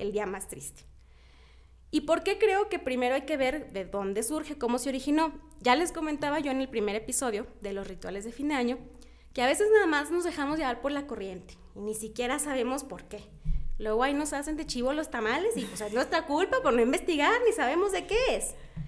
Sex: female